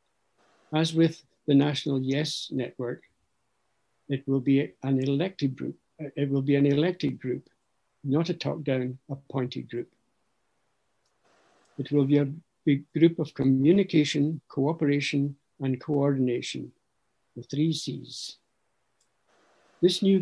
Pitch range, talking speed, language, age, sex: 130-155 Hz, 115 wpm, English, 60-79, male